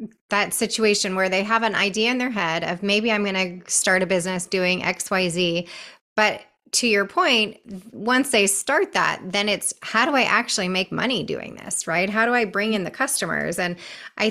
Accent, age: American, 20-39